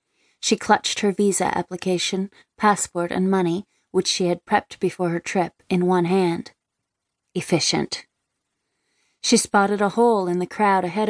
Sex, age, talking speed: female, 30-49, 145 wpm